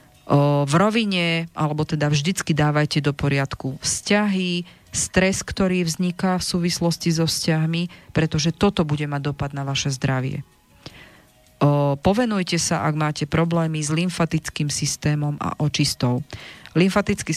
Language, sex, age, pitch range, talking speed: Slovak, female, 40-59, 145-170 Hz, 130 wpm